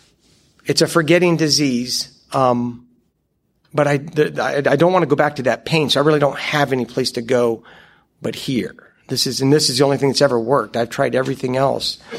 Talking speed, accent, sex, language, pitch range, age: 215 wpm, American, male, English, 120-145 Hz, 50-69